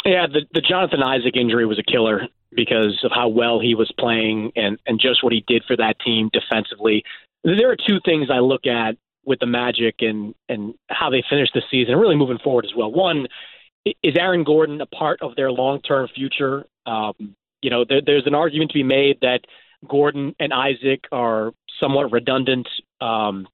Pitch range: 120-145 Hz